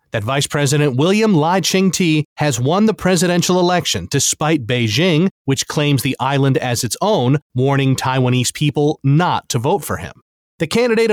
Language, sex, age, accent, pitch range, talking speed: English, male, 30-49, American, 135-165 Hz, 160 wpm